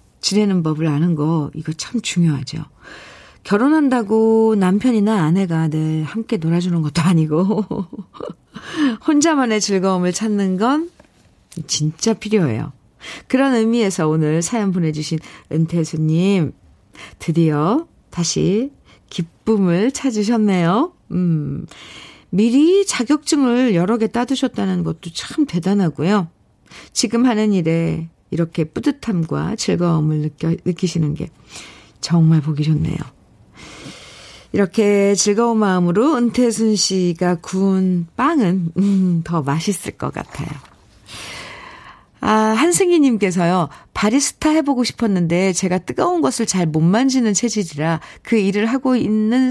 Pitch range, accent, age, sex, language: 160-225 Hz, native, 50-69, female, Korean